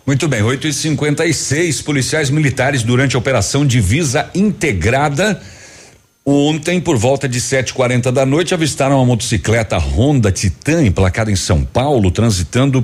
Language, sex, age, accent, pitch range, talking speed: Portuguese, male, 60-79, Brazilian, 110-140 Hz, 140 wpm